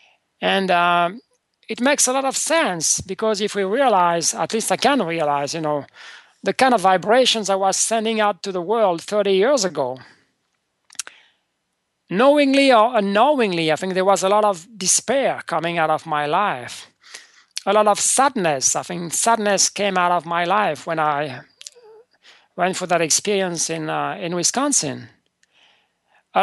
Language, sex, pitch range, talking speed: English, male, 170-235 Hz, 165 wpm